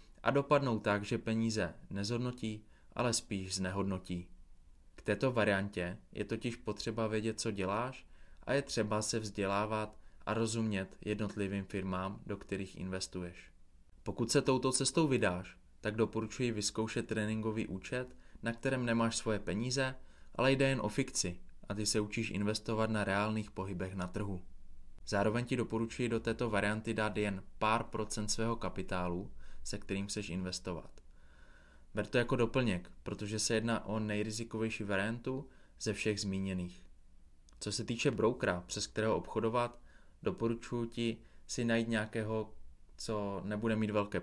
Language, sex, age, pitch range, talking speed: Czech, male, 20-39, 95-115 Hz, 140 wpm